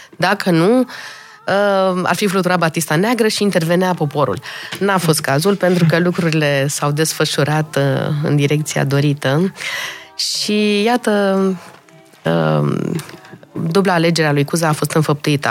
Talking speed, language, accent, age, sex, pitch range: 115 wpm, Romanian, native, 20-39, female, 155-200 Hz